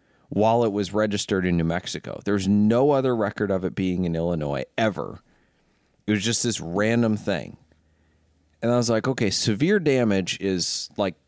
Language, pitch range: English, 90-110 Hz